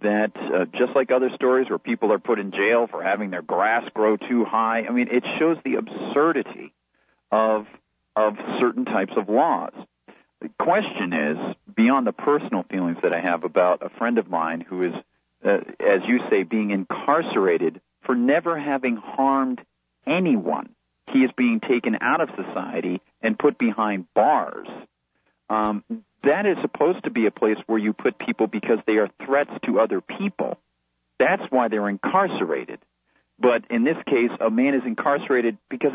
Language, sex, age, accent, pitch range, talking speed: English, male, 40-59, American, 105-140 Hz, 170 wpm